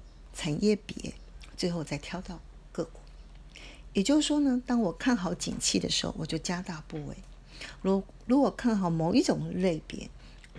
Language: Chinese